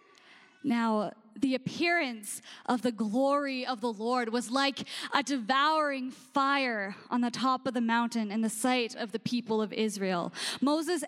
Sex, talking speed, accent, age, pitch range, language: female, 155 wpm, American, 10-29, 215-300 Hz, English